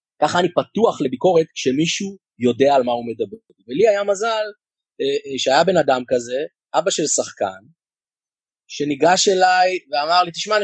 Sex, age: male, 30-49